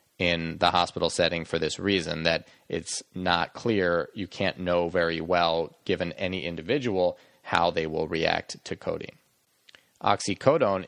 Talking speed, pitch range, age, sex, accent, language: 145 wpm, 85-95 Hz, 30-49, male, American, English